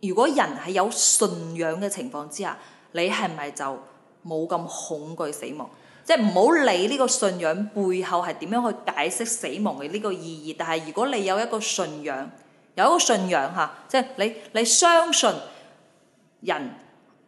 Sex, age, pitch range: female, 20-39, 170-235 Hz